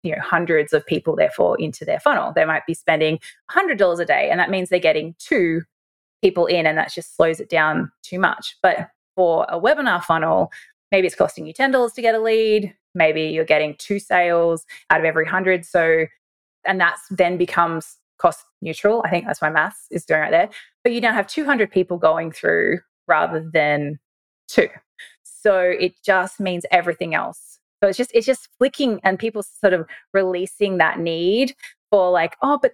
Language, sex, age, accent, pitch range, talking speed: English, female, 20-39, Australian, 165-225 Hz, 190 wpm